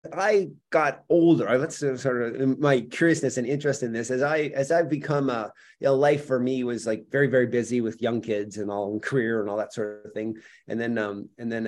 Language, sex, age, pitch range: English, male, 30-49, 115-145 Hz